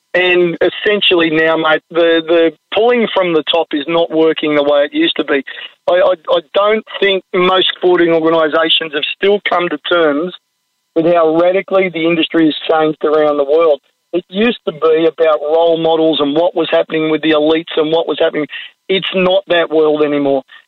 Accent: Australian